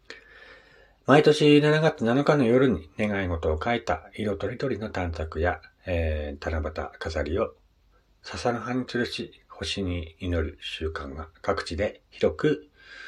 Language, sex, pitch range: Japanese, male, 80-120 Hz